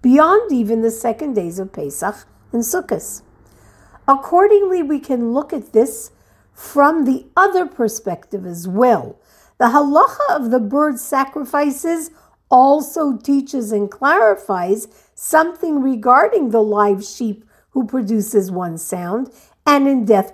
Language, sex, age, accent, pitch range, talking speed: English, female, 50-69, American, 210-305 Hz, 125 wpm